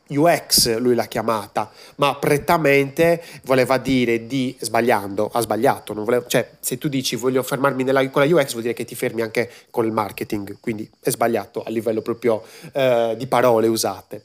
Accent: native